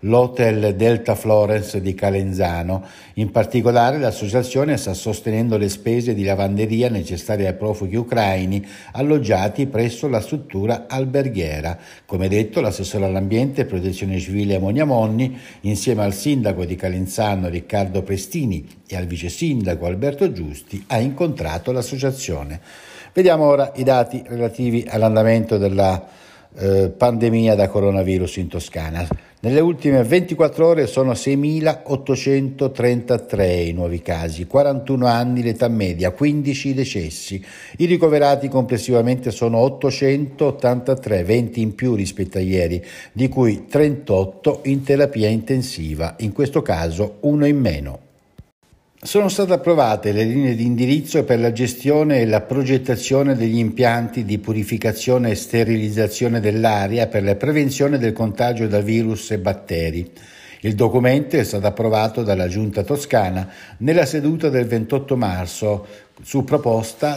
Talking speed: 125 wpm